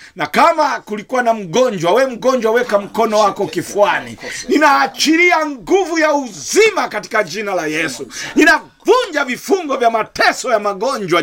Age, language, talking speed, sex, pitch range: 50-69, Swahili, 135 wpm, male, 185-290 Hz